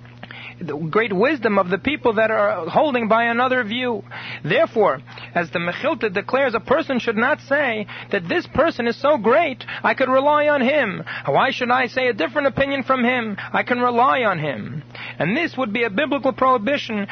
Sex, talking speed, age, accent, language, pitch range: male, 190 wpm, 40-59, American, English, 190-255 Hz